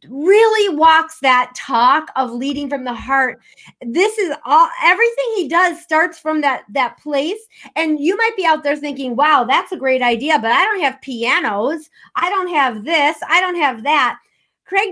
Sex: female